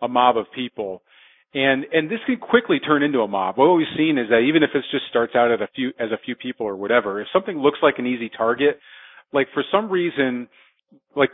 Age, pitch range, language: 40-59, 120-155 Hz, English